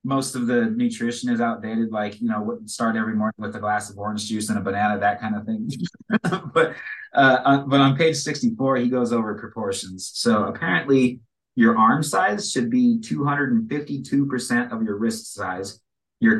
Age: 30-49